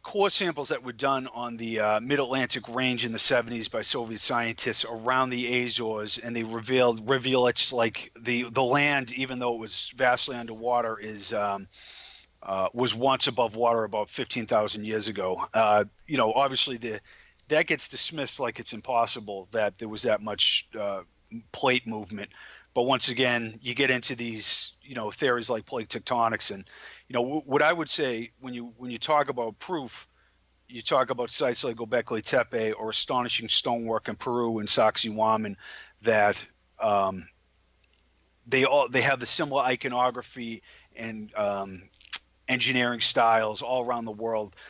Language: English